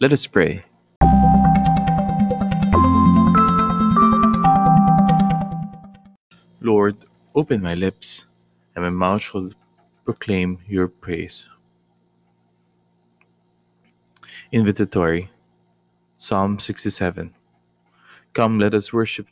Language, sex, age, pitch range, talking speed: English, male, 20-39, 90-110 Hz, 65 wpm